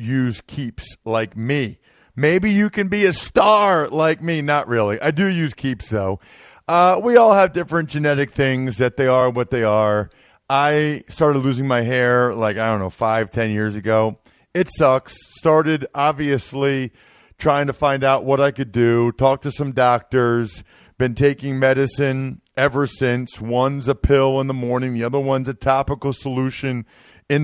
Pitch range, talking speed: 125-155 Hz, 175 wpm